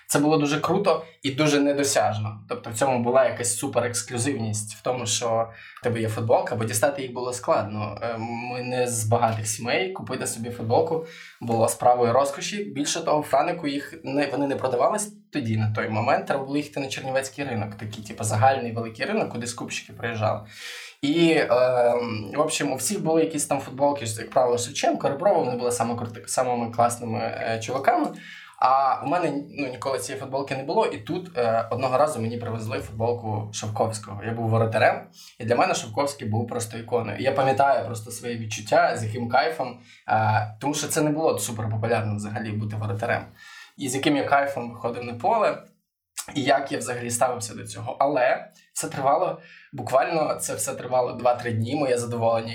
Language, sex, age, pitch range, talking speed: Ukrainian, male, 20-39, 115-140 Hz, 175 wpm